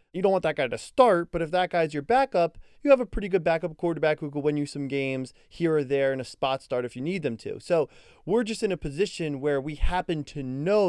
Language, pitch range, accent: English, 125-165 Hz, American